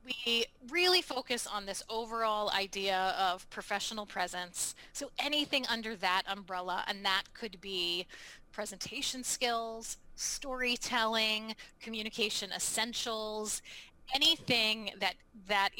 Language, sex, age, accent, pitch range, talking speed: English, female, 20-39, American, 195-235 Hz, 105 wpm